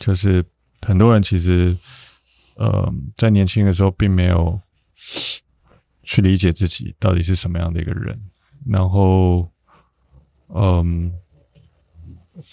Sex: male